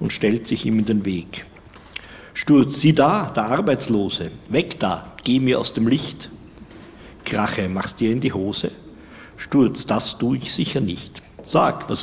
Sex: male